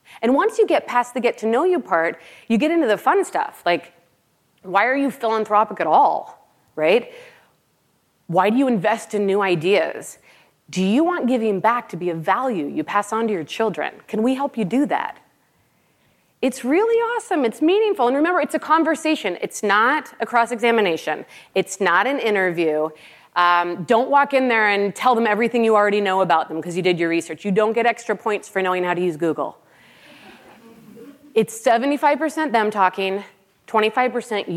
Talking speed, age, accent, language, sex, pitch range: 180 wpm, 30-49, American, English, female, 190-255 Hz